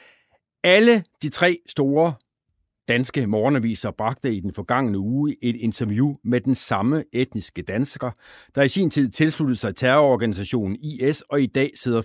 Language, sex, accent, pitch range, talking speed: Danish, male, native, 110-155 Hz, 150 wpm